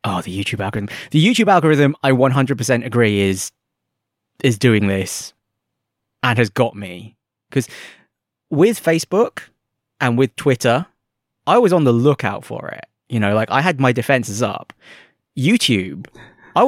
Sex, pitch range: male, 115-140 Hz